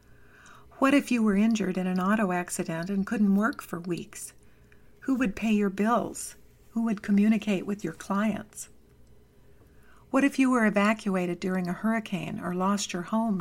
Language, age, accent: English, 60-79, American